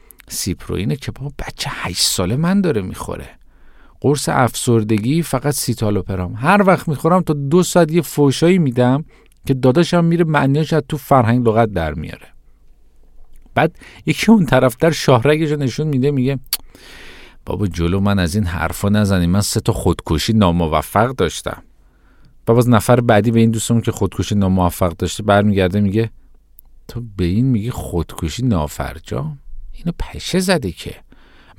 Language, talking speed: Persian, 140 wpm